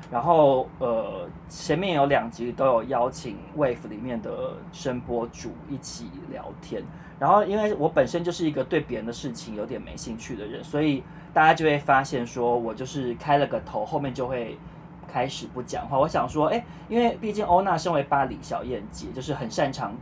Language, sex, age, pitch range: Chinese, male, 20-39, 125-170 Hz